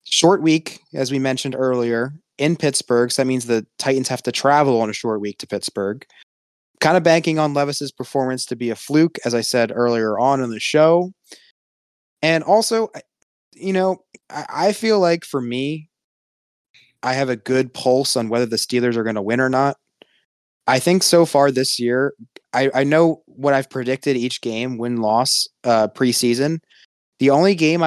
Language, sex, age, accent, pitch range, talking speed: English, male, 20-39, American, 120-150 Hz, 185 wpm